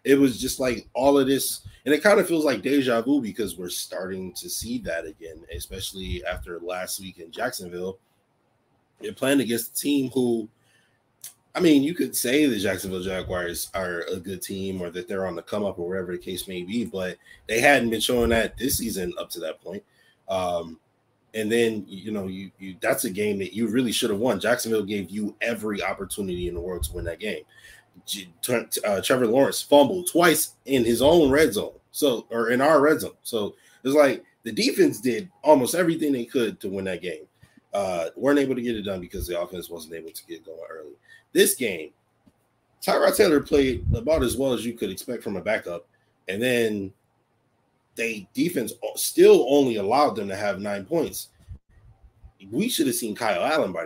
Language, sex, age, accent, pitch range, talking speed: English, male, 20-39, American, 95-140 Hz, 200 wpm